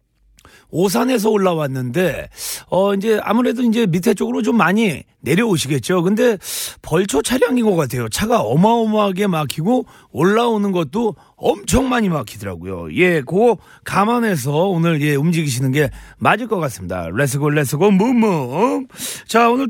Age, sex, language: 40-59, male, Korean